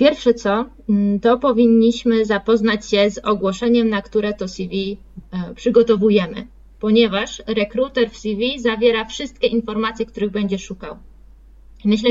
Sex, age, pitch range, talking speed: female, 20-39, 210-240 Hz, 120 wpm